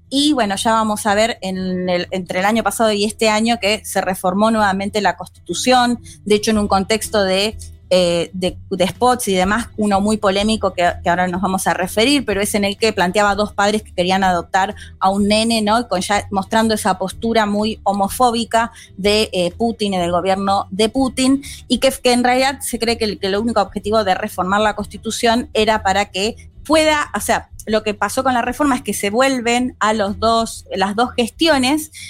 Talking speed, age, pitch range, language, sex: 210 wpm, 20-39, 195-260 Hz, Spanish, female